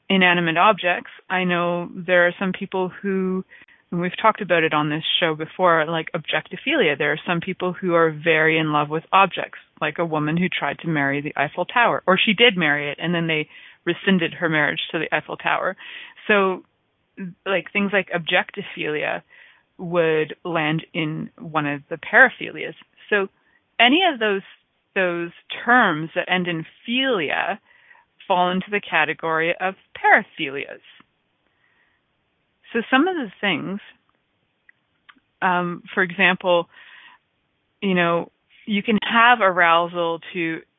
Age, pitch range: 30-49, 160-190 Hz